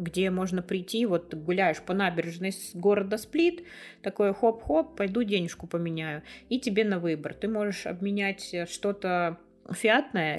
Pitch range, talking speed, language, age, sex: 165-205 Hz, 135 wpm, Russian, 20-39, female